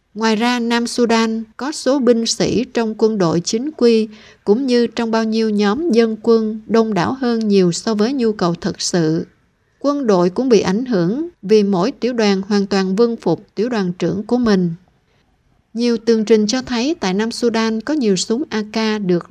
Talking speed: 195 wpm